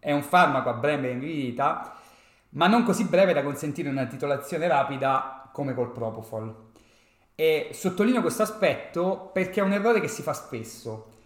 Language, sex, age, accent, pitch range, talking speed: Italian, male, 30-49, native, 125-170 Hz, 165 wpm